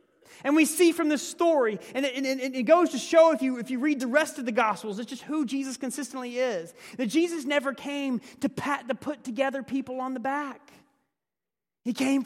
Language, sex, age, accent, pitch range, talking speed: English, male, 30-49, American, 215-290 Hz, 210 wpm